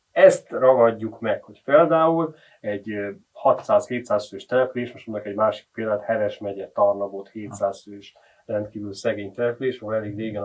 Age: 30-49